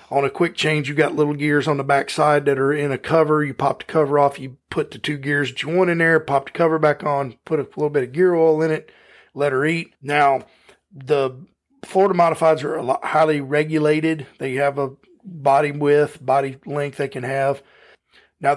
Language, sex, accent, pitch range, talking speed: English, male, American, 135-155 Hz, 215 wpm